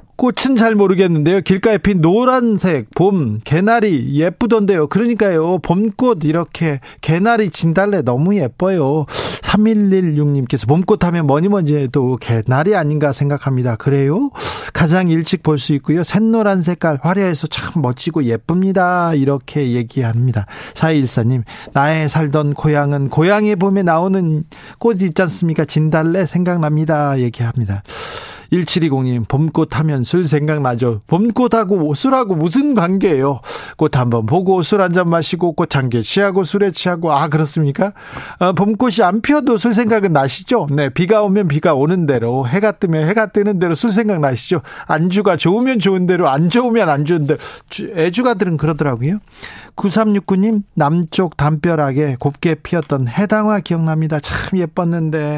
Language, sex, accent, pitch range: Korean, male, native, 145-195 Hz